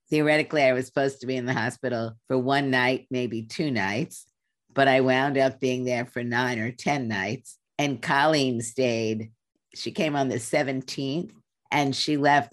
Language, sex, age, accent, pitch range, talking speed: English, female, 50-69, American, 120-140 Hz, 175 wpm